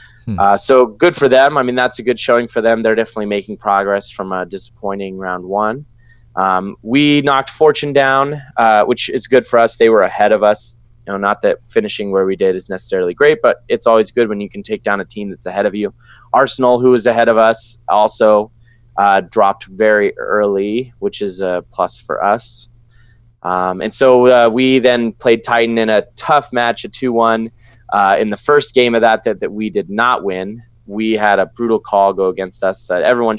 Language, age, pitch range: English, 20-39, 100-120 Hz